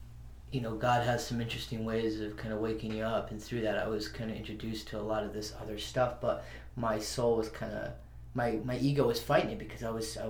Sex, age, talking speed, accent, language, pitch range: male, 20-39, 255 wpm, American, English, 105-125 Hz